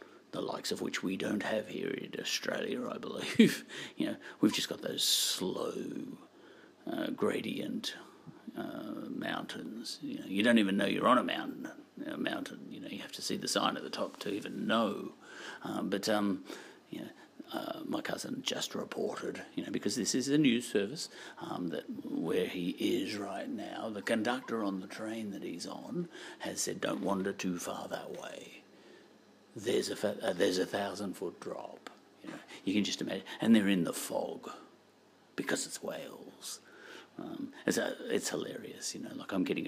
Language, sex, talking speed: English, male, 185 wpm